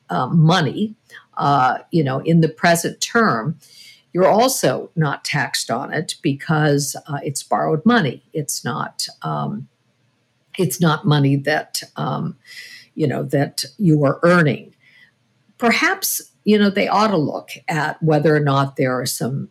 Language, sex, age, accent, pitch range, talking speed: English, female, 50-69, American, 140-180 Hz, 150 wpm